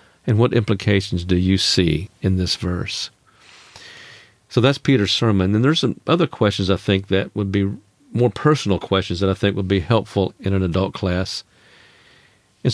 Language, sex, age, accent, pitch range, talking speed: English, male, 50-69, American, 95-115 Hz, 175 wpm